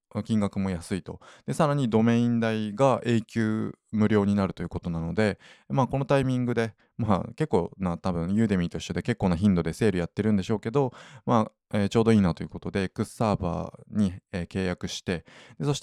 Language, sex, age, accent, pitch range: Japanese, male, 20-39, native, 95-125 Hz